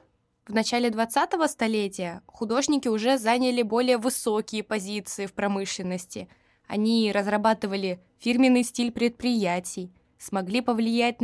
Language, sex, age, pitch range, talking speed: Russian, female, 20-39, 200-240 Hz, 100 wpm